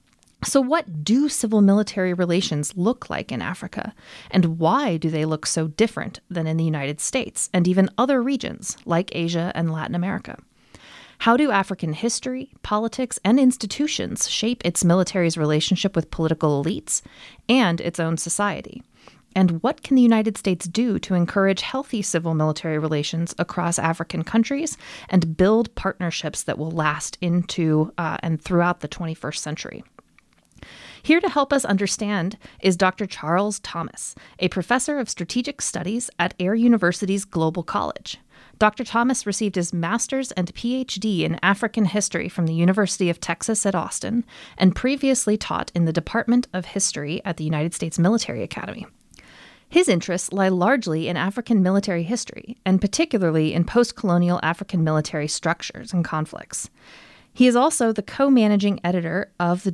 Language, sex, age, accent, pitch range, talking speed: English, female, 30-49, American, 170-225 Hz, 155 wpm